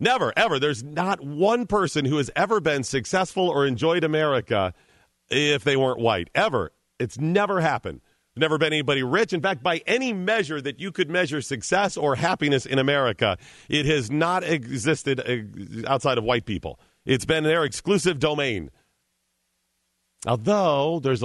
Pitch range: 115-165 Hz